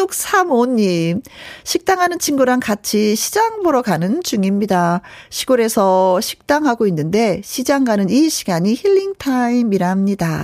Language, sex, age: Korean, female, 40-59